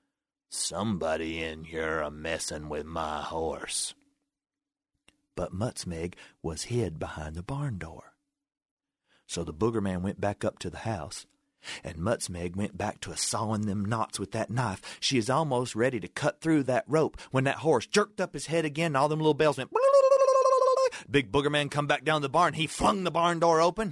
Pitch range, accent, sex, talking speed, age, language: 110-165 Hz, American, male, 185 wpm, 40-59, English